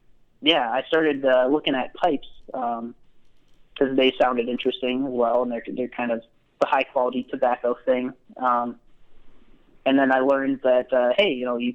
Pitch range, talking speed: 120-135 Hz, 175 wpm